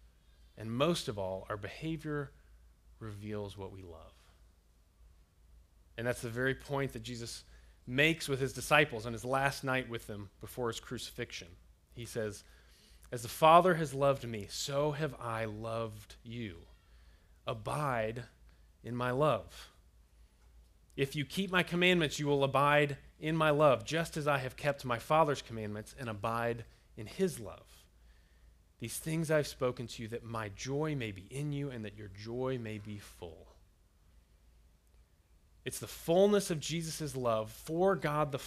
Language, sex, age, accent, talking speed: English, male, 30-49, American, 155 wpm